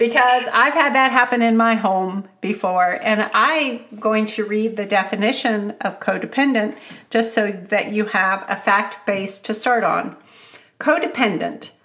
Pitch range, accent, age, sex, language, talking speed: 200-245 Hz, American, 40-59, female, English, 150 wpm